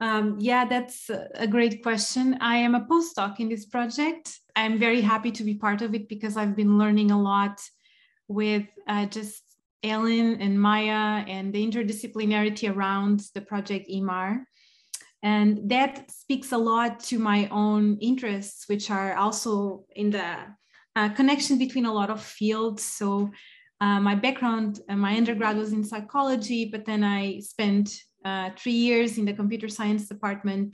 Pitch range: 205-230 Hz